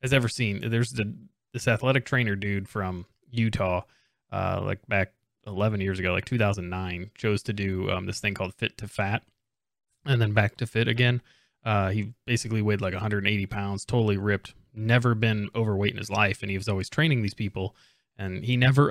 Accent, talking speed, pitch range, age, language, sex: American, 190 wpm, 100-115 Hz, 20-39, English, male